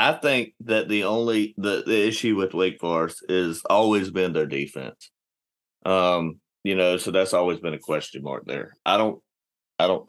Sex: male